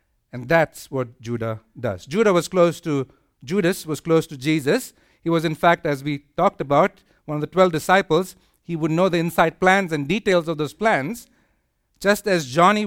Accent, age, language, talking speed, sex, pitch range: Indian, 50-69, English, 190 wpm, male, 155-205 Hz